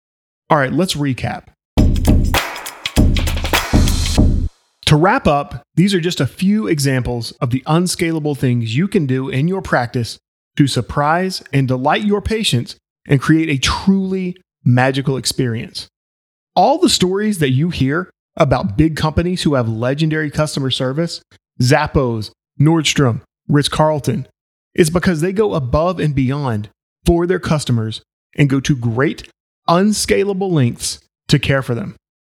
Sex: male